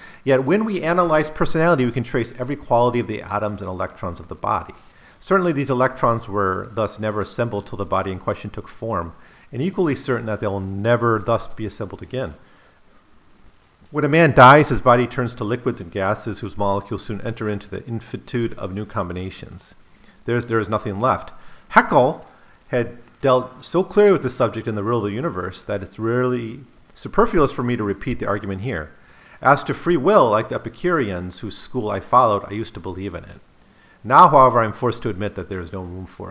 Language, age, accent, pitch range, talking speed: English, 40-59, American, 95-125 Hz, 200 wpm